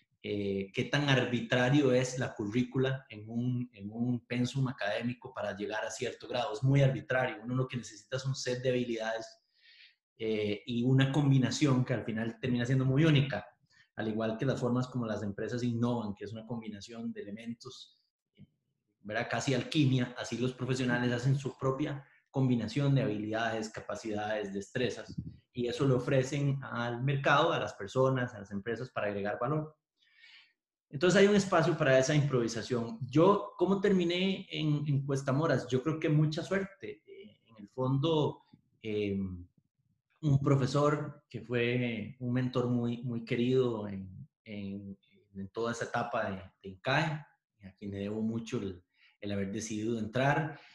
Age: 30-49